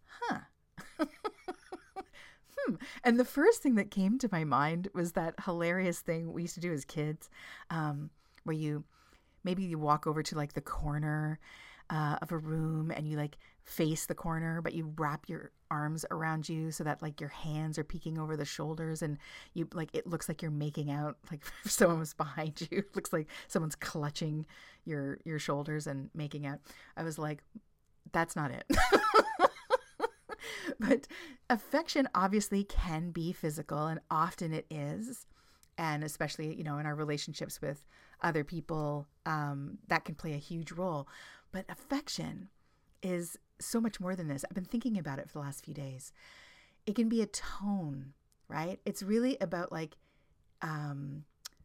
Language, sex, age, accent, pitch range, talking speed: English, female, 40-59, American, 150-195 Hz, 170 wpm